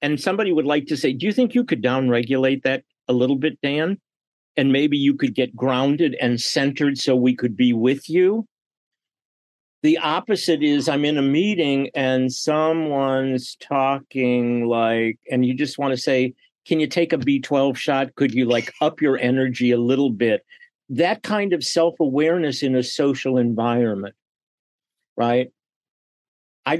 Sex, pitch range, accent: male, 130-165 Hz, American